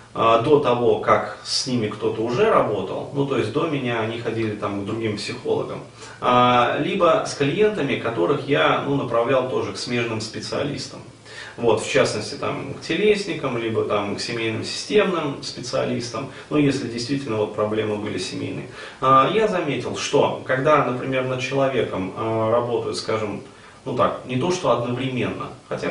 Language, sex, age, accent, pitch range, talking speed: Russian, male, 30-49, native, 115-145 Hz, 150 wpm